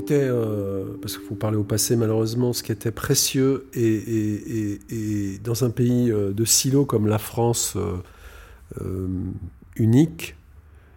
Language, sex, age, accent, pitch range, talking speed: French, male, 50-69, French, 100-130 Hz, 155 wpm